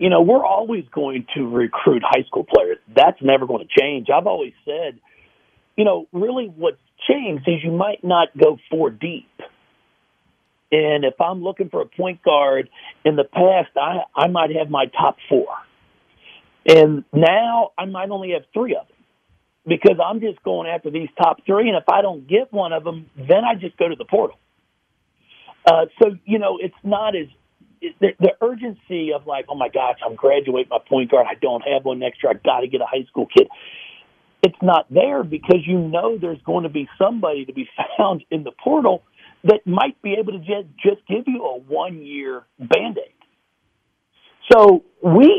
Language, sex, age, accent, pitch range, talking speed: English, male, 50-69, American, 150-220 Hz, 190 wpm